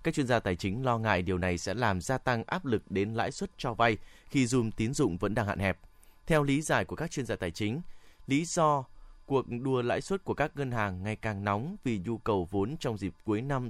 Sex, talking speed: male, 255 wpm